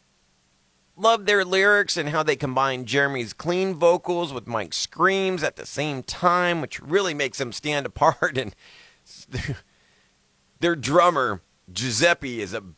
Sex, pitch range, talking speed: male, 135-175 Hz, 135 wpm